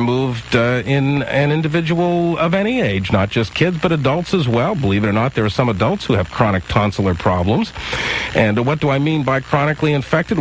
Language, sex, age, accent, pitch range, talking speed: English, male, 50-69, American, 105-150 Hz, 215 wpm